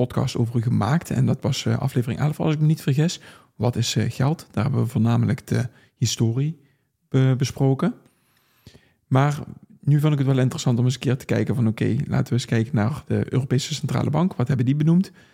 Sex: male